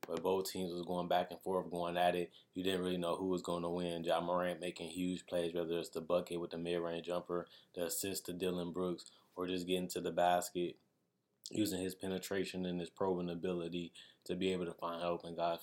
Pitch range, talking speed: 85-90 Hz, 235 wpm